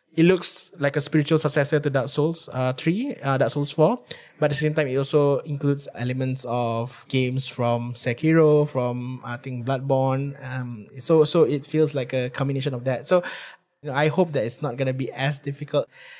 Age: 20-39